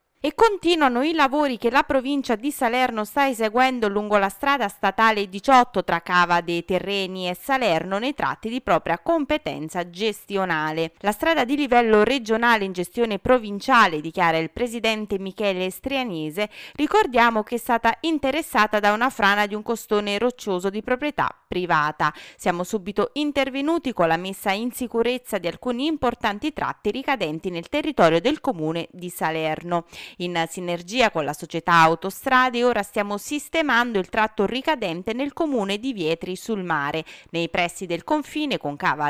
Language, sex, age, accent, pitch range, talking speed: Italian, female, 20-39, native, 180-260 Hz, 150 wpm